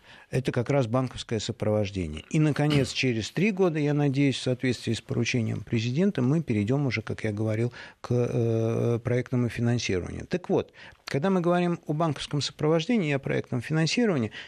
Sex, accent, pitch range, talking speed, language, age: male, native, 115-150 Hz, 160 wpm, Russian, 50-69